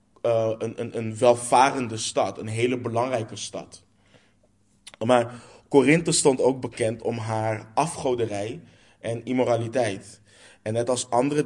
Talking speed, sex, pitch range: 125 wpm, male, 110-125 Hz